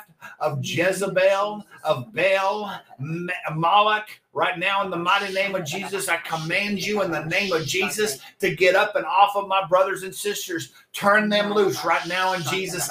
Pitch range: 175-205 Hz